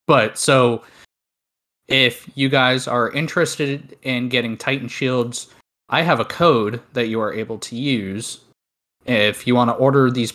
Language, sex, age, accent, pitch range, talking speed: English, male, 20-39, American, 100-130 Hz, 155 wpm